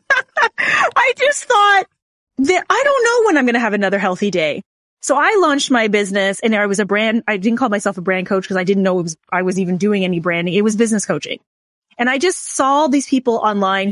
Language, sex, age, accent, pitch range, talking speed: English, female, 20-39, American, 195-265 Hz, 230 wpm